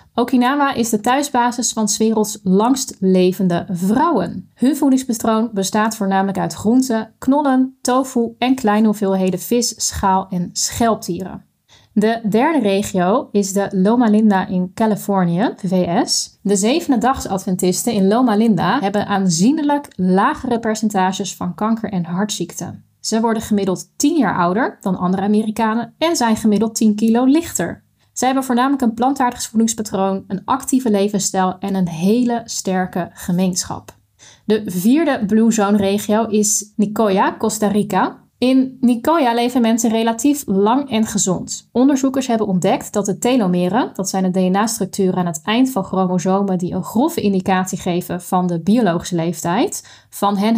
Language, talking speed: Dutch, 145 wpm